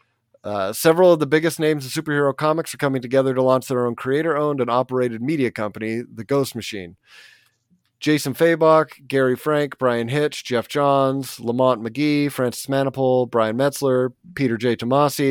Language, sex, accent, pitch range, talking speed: English, male, American, 120-145 Hz, 160 wpm